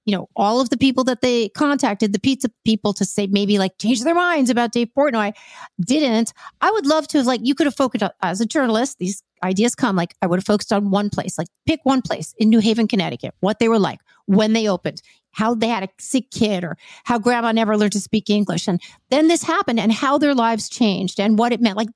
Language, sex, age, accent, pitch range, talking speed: English, female, 50-69, American, 200-260 Hz, 245 wpm